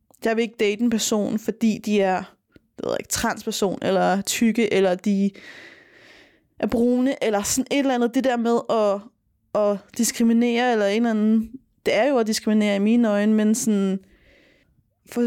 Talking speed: 165 wpm